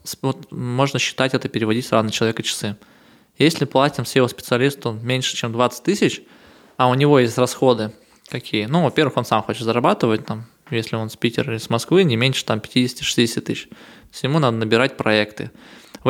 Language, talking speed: Russian, 170 wpm